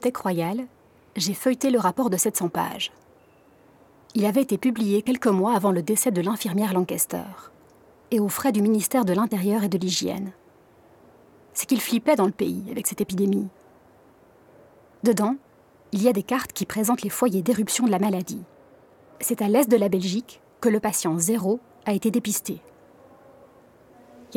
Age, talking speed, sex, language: 30-49, 165 wpm, female, French